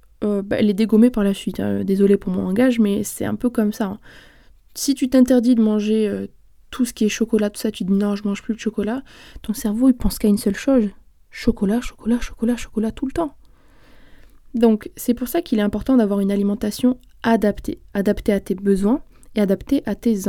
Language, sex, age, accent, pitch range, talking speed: French, female, 20-39, French, 200-245 Hz, 225 wpm